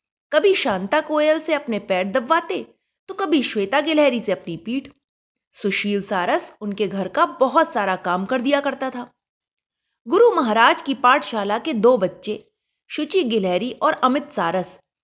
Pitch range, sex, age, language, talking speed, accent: 200-305 Hz, female, 30-49, Hindi, 150 wpm, native